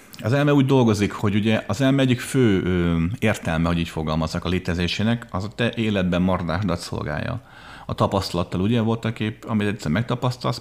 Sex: male